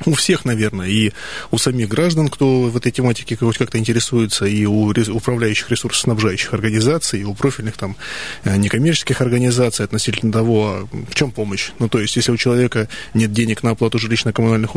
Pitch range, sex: 105-125 Hz, male